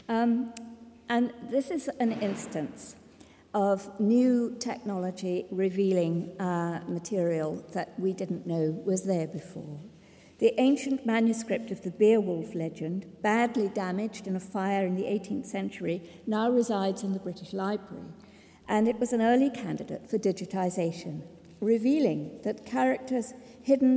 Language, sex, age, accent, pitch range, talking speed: English, female, 50-69, British, 185-235 Hz, 135 wpm